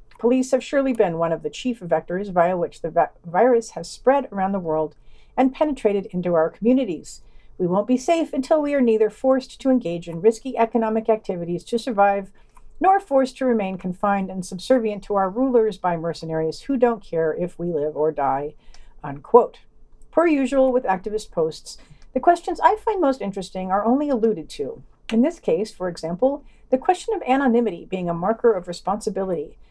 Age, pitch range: 50-69, 180-255 Hz